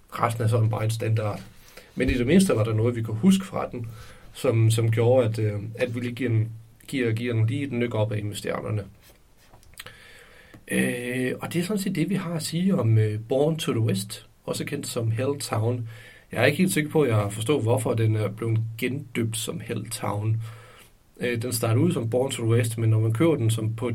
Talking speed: 225 wpm